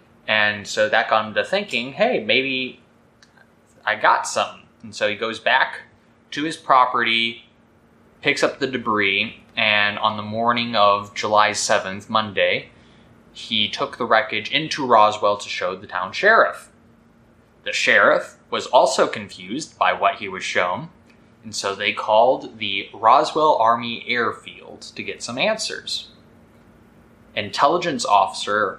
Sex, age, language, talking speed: male, 20-39, English, 140 wpm